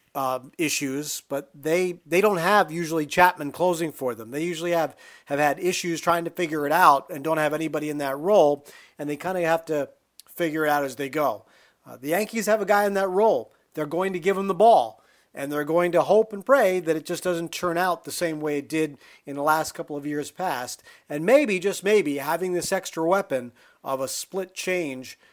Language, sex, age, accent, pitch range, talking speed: English, male, 40-59, American, 145-195 Hz, 225 wpm